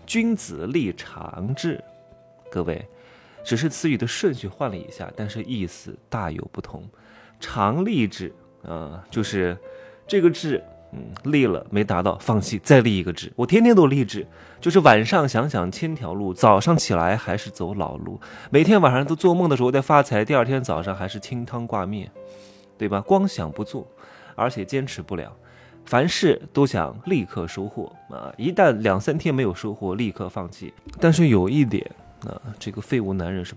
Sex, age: male, 20-39